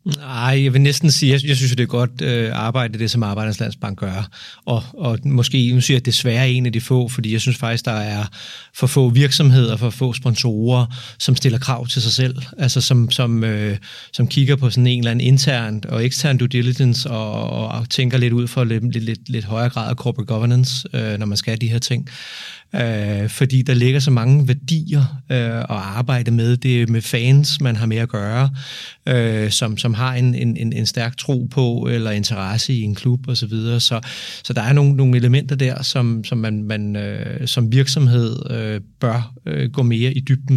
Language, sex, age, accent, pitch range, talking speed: Danish, male, 30-49, native, 115-130 Hz, 215 wpm